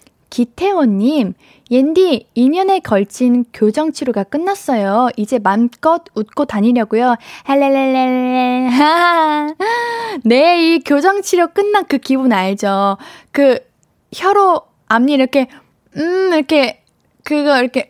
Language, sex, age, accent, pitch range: Korean, female, 20-39, native, 220-315 Hz